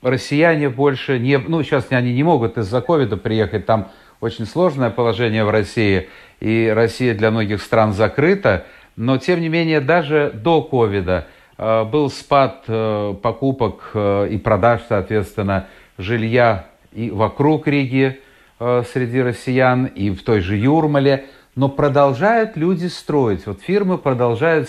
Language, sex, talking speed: Russian, male, 140 wpm